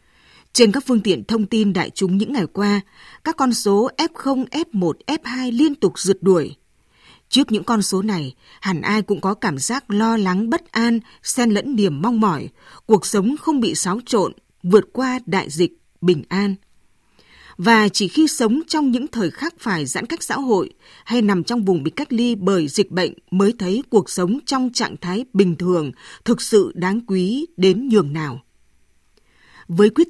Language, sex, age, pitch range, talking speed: Vietnamese, female, 20-39, 190-255 Hz, 185 wpm